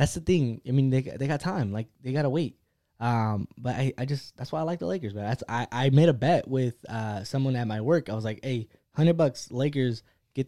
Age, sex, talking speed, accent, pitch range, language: 20-39, male, 265 wpm, American, 120-155 Hz, English